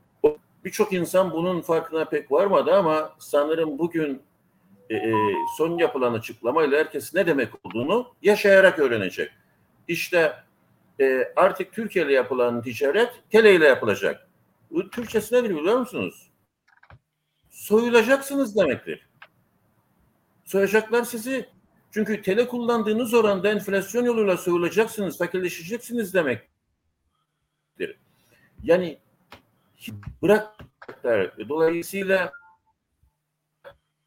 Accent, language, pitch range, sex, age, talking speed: native, Turkish, 145-235 Hz, male, 60-79, 85 wpm